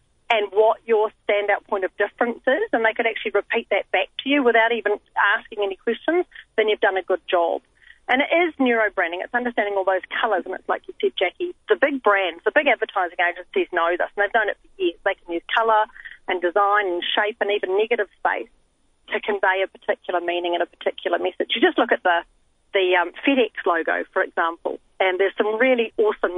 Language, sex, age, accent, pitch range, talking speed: English, female, 40-59, Australian, 185-250 Hz, 215 wpm